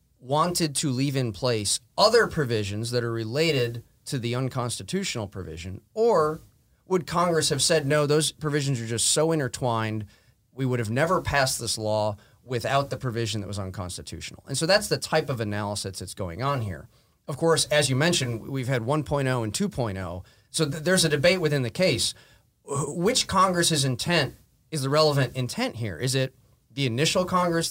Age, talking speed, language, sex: 30-49, 175 wpm, English, male